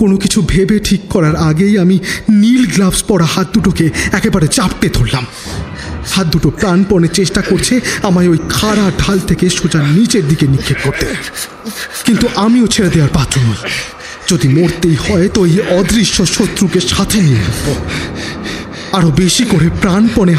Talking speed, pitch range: 135 wpm, 150-200 Hz